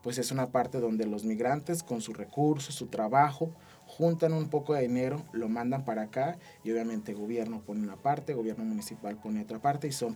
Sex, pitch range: male, 115-145 Hz